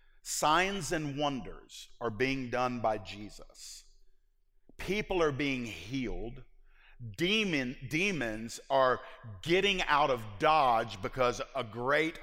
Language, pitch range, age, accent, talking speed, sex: English, 110-135 Hz, 50-69, American, 105 wpm, male